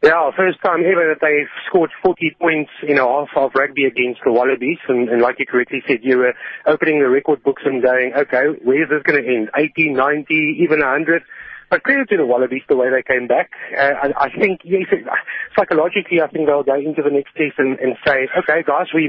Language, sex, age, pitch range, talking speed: English, male, 30-49, 130-160 Hz, 235 wpm